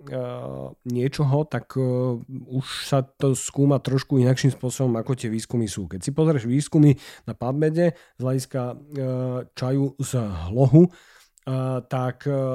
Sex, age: male, 40-59